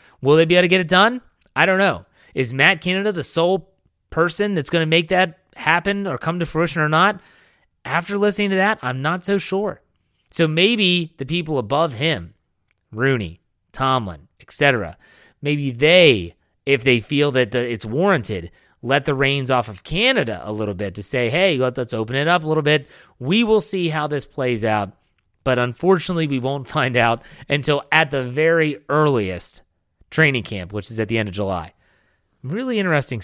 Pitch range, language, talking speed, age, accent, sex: 115-165 Hz, English, 185 wpm, 30-49, American, male